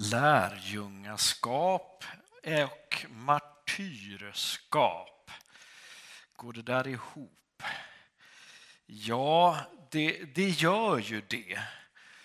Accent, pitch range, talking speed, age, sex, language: native, 110-175 Hz, 60 wpm, 50-69, male, Swedish